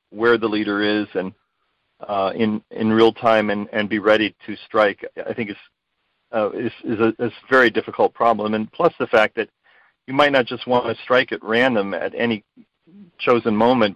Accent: American